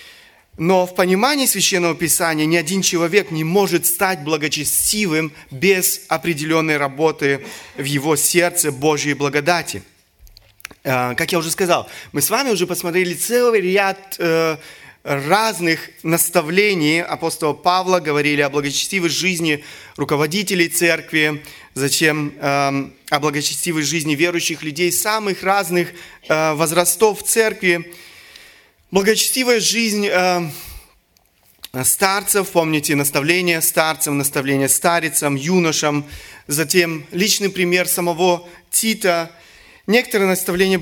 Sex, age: male, 30-49